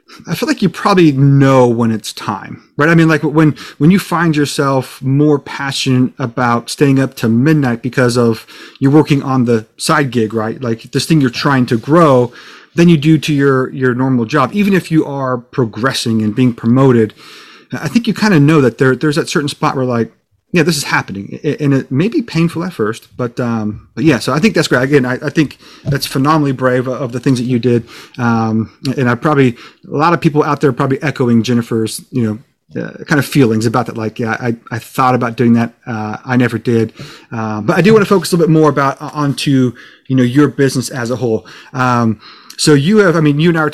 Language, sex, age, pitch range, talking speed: English, male, 30-49, 120-150 Hz, 230 wpm